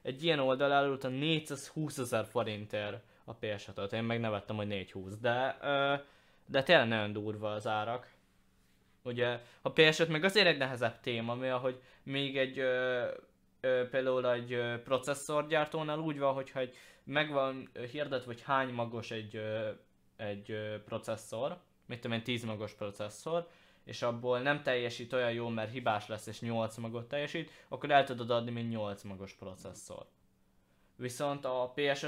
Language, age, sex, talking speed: English, 10-29, male, 145 wpm